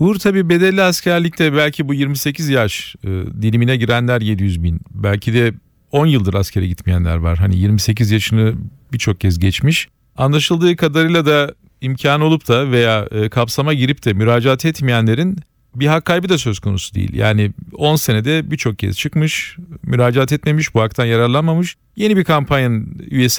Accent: native